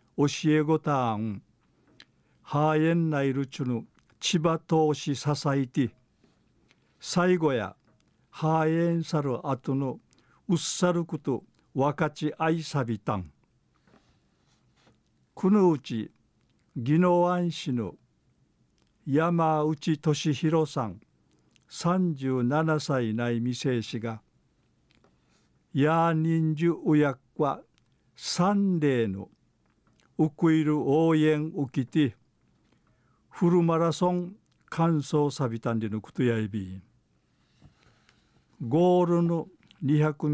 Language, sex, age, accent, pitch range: Japanese, male, 50-69, native, 130-165 Hz